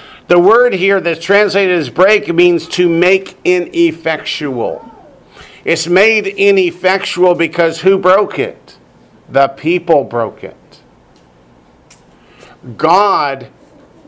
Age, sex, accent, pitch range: 50-69, male, American, 155-190 Hz